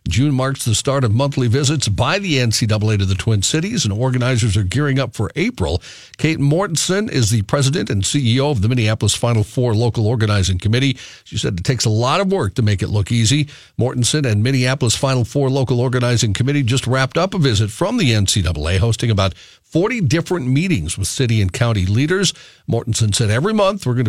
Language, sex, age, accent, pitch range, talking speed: English, male, 50-69, American, 105-140 Hz, 200 wpm